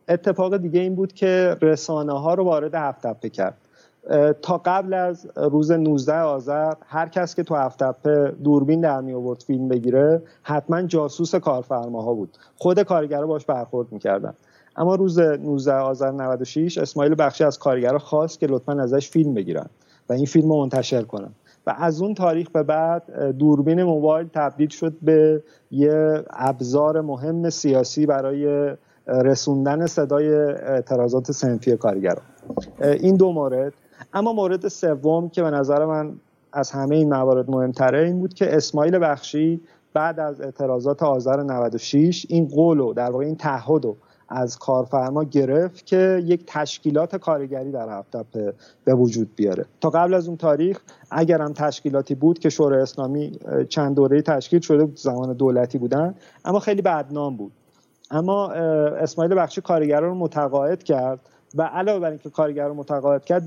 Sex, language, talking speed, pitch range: male, Persian, 150 wpm, 135-165 Hz